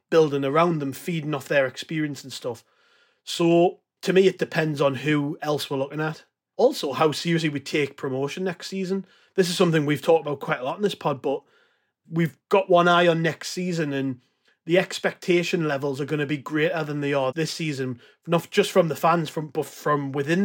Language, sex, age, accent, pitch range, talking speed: English, male, 30-49, British, 150-175 Hz, 205 wpm